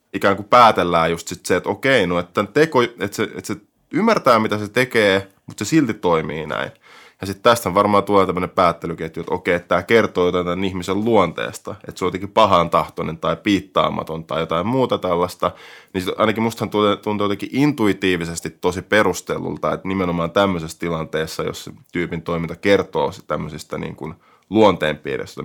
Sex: male